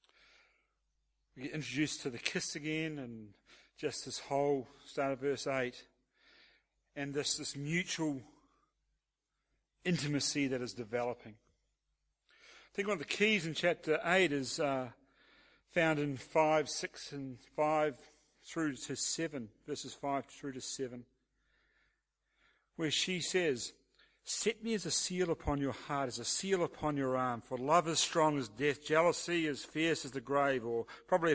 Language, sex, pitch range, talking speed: English, male, 135-180 Hz, 150 wpm